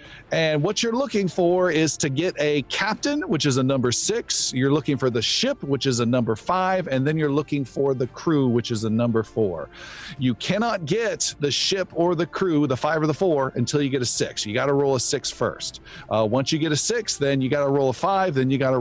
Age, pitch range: 40-59, 120-170 Hz